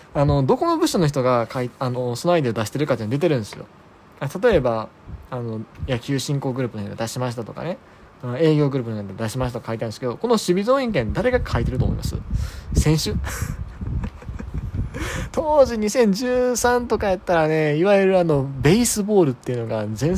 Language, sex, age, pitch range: Japanese, male, 20-39, 105-160 Hz